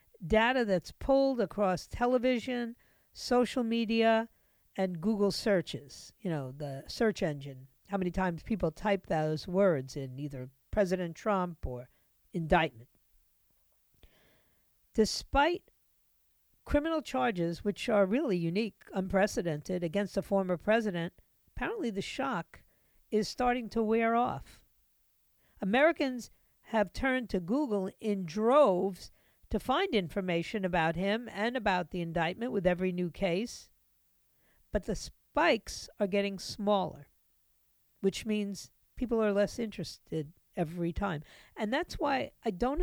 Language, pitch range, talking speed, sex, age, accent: English, 160-230 Hz, 120 wpm, female, 50-69, American